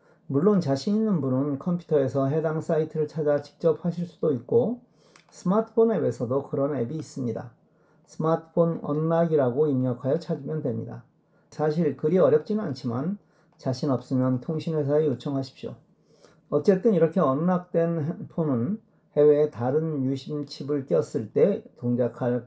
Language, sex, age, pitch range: Korean, male, 40-59, 135-175 Hz